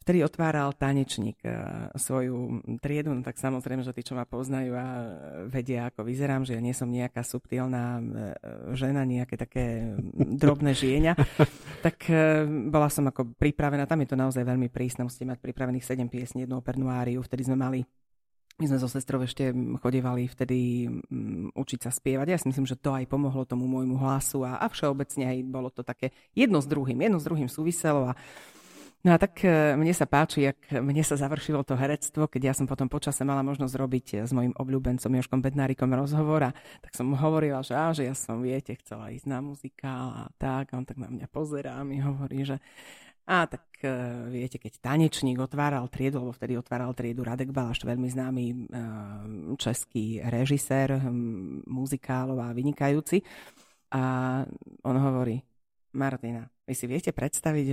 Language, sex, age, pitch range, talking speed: Slovak, female, 40-59, 125-145 Hz, 175 wpm